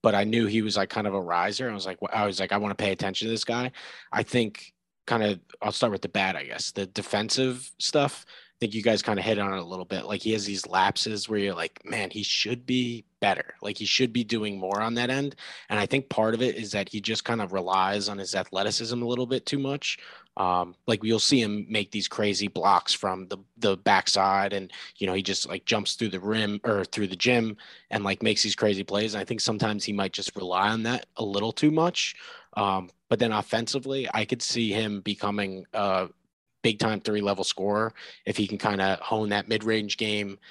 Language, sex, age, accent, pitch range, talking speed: English, male, 20-39, American, 100-115 Hz, 240 wpm